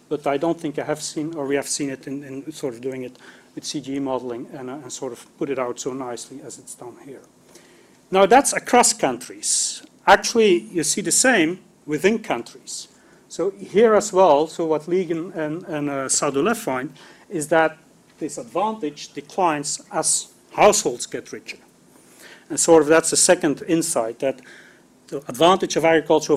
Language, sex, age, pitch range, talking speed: English, male, 40-59, 145-180 Hz, 180 wpm